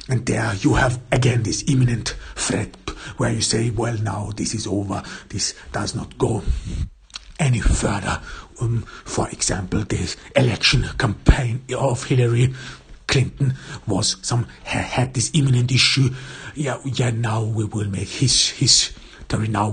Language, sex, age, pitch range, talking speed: English, male, 60-79, 105-130 Hz, 140 wpm